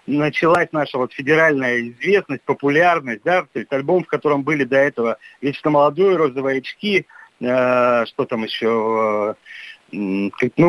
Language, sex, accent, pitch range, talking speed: Russian, male, native, 140-180 Hz, 130 wpm